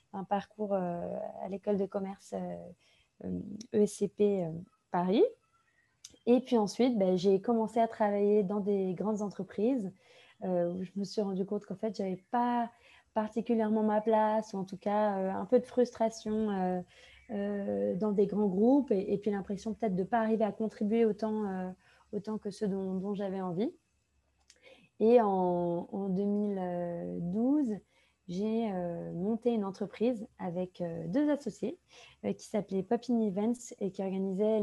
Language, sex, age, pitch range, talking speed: French, female, 20-39, 190-225 Hz, 165 wpm